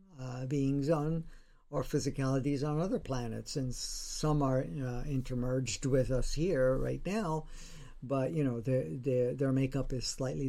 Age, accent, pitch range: 50-69, American, 130-165 Hz